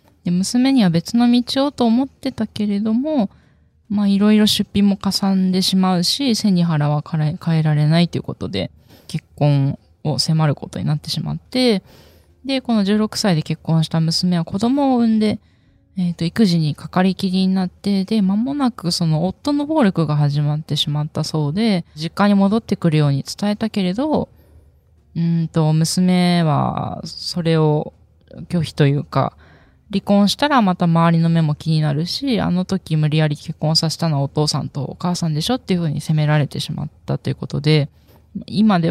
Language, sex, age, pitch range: Japanese, female, 20-39, 150-205 Hz